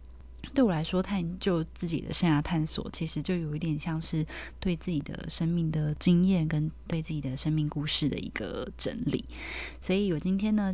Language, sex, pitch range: Chinese, female, 145-185 Hz